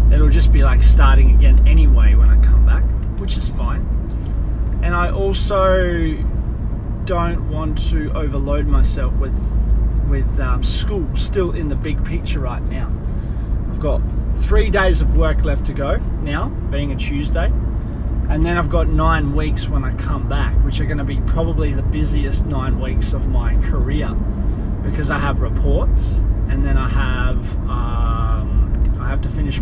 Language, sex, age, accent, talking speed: English, male, 20-39, Australian, 165 wpm